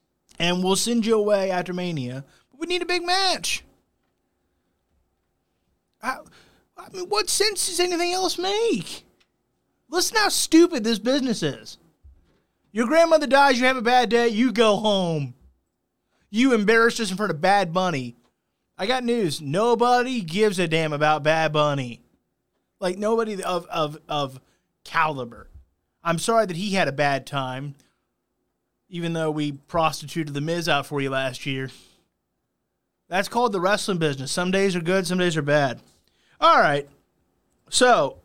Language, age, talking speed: English, 20-39, 150 wpm